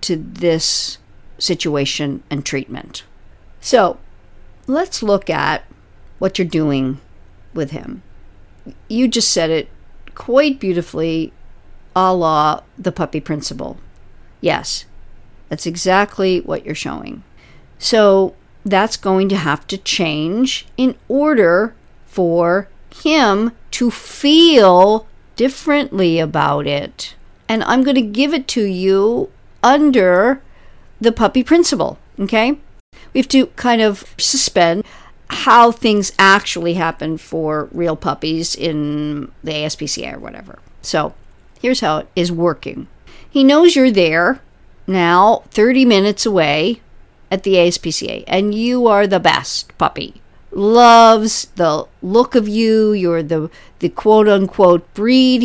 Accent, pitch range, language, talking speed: American, 165-235 Hz, English, 120 wpm